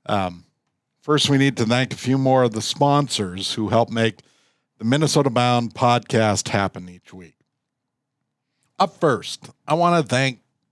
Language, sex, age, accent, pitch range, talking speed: English, male, 50-69, American, 115-165 Hz, 155 wpm